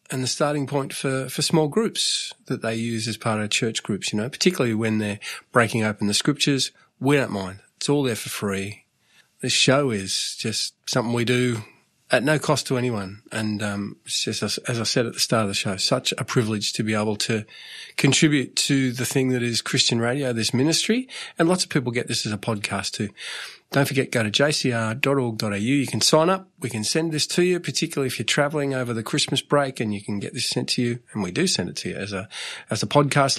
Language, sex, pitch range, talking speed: English, male, 110-145 Hz, 230 wpm